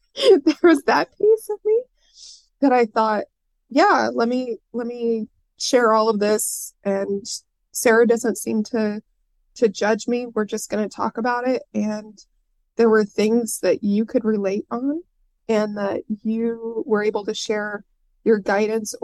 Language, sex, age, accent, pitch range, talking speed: English, female, 20-39, American, 205-230 Hz, 160 wpm